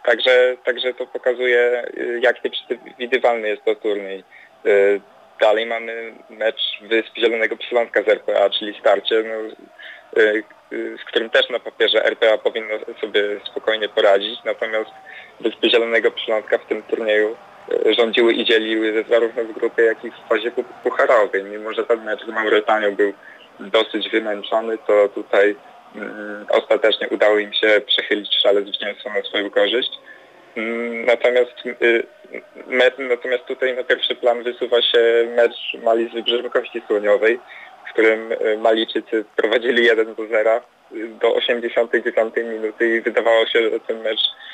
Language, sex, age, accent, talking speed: Polish, male, 20-39, native, 135 wpm